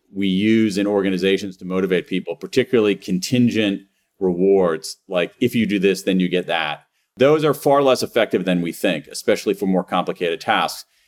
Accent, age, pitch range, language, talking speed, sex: American, 40-59, 95-120 Hz, English, 175 wpm, male